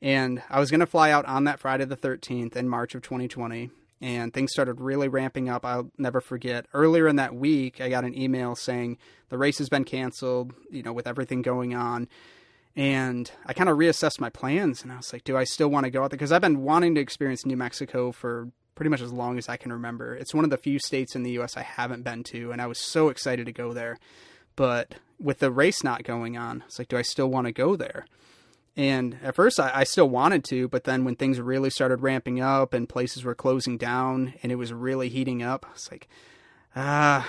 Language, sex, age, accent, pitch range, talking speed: English, male, 30-49, American, 120-135 Hz, 240 wpm